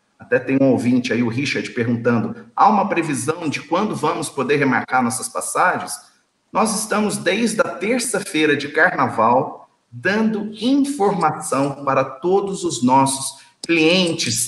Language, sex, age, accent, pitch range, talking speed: Portuguese, male, 50-69, Brazilian, 130-220 Hz, 135 wpm